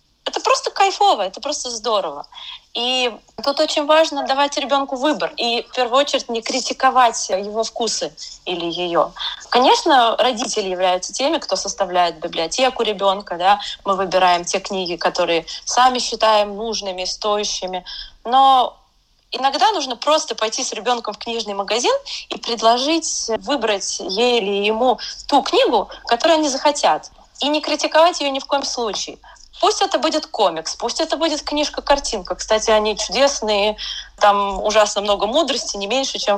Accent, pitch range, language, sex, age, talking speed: native, 210-290 Hz, Russian, female, 20-39, 145 wpm